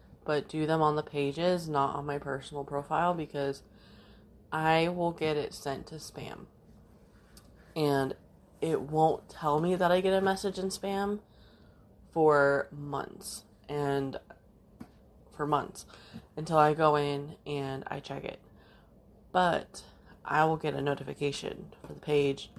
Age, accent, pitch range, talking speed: 20-39, American, 140-170 Hz, 140 wpm